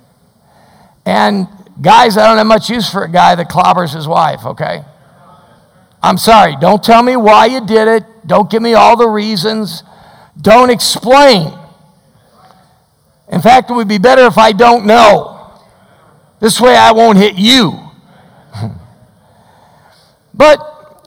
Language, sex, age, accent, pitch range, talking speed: English, male, 50-69, American, 175-230 Hz, 140 wpm